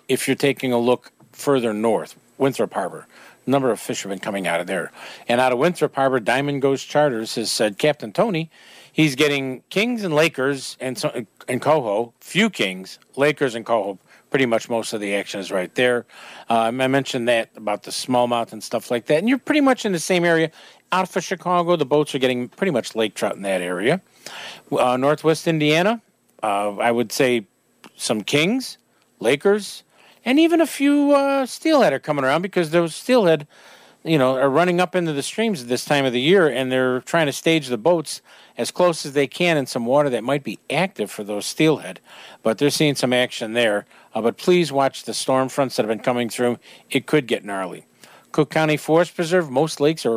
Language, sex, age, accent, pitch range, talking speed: English, male, 50-69, American, 120-180 Hz, 200 wpm